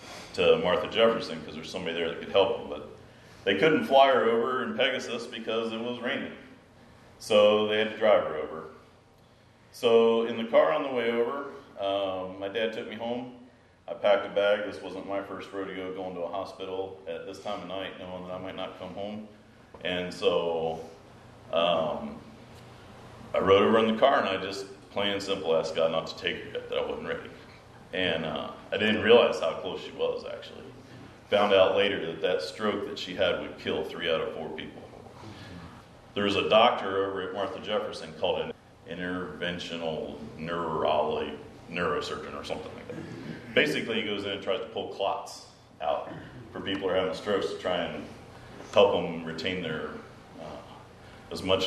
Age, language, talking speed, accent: 40-59, English, 190 wpm, American